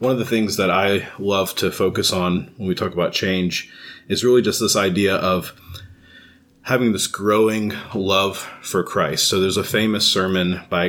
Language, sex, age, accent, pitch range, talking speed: English, male, 30-49, American, 90-105 Hz, 185 wpm